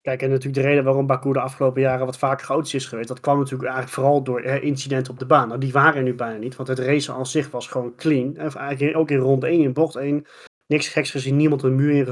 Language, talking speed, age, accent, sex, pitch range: Dutch, 275 wpm, 30-49, Dutch, male, 130-150 Hz